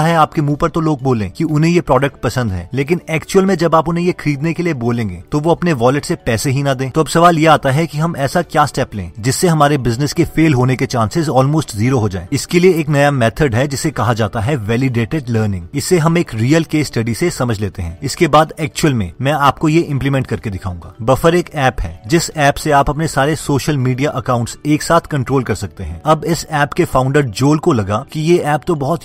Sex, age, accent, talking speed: male, 30-49, native, 170 wpm